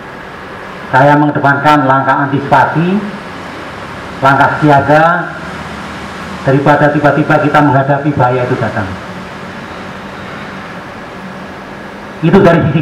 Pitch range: 135-165 Hz